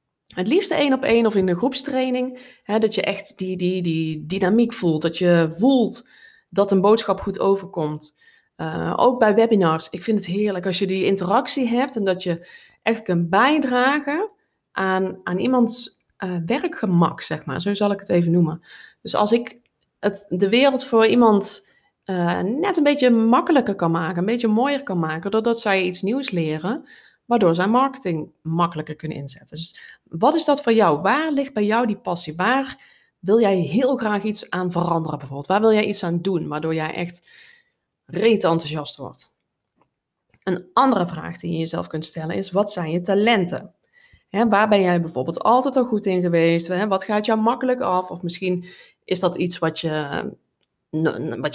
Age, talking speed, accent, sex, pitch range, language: 20-39, 180 wpm, Dutch, female, 170-245 Hz, Dutch